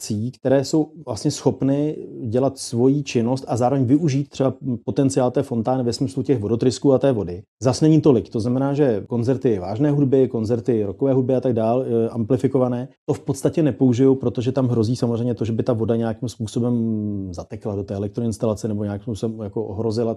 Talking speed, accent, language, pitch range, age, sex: 180 wpm, native, Czech, 115-135 Hz, 30-49, male